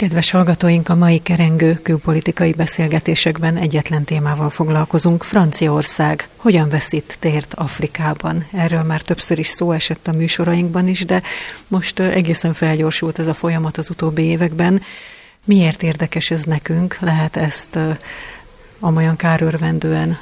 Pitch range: 160-175 Hz